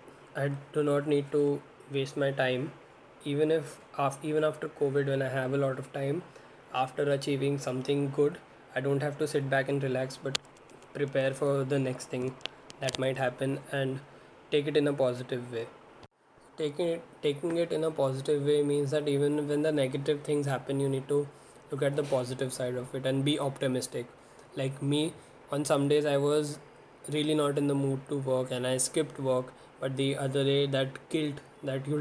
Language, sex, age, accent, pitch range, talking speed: English, male, 20-39, Indian, 135-150 Hz, 195 wpm